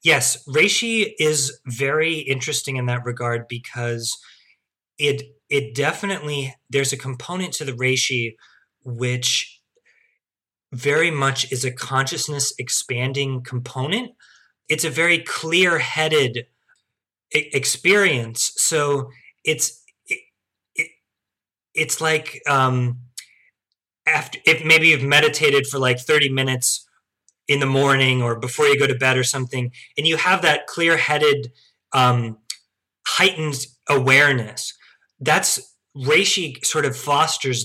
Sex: male